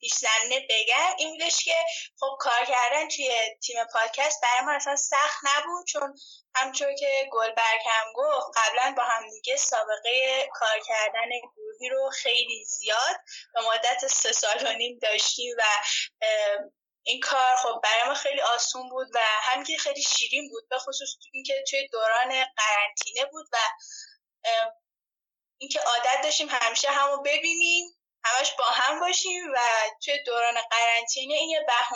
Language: Persian